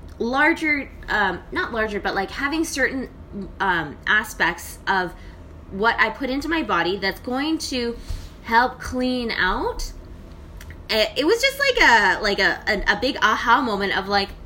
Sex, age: female, 10-29